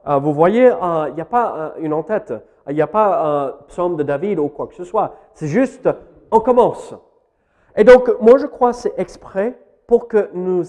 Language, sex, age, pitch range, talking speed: French, male, 40-59, 155-220 Hz, 200 wpm